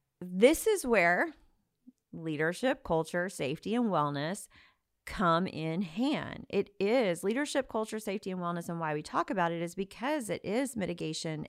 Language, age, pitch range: English, 40-59, 170-230 Hz